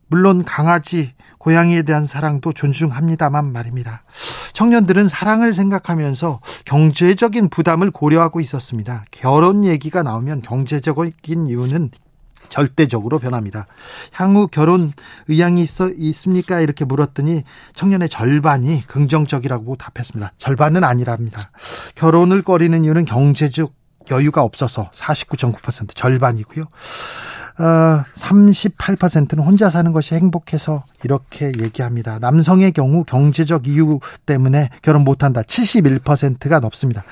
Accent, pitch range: native, 135-175 Hz